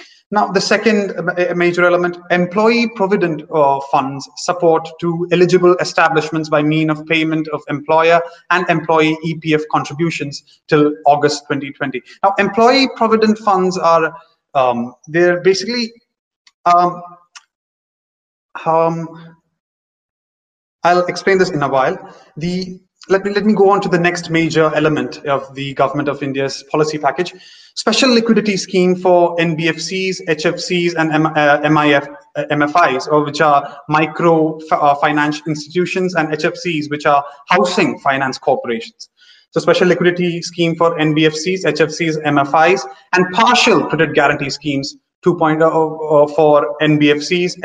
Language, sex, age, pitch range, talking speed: English, male, 30-49, 150-180 Hz, 125 wpm